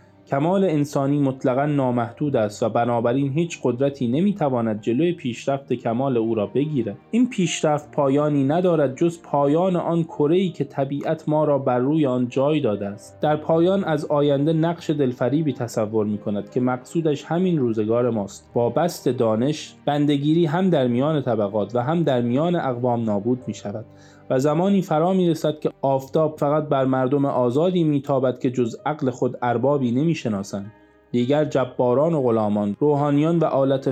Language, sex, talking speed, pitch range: Persian, male, 155 wpm, 120-155 Hz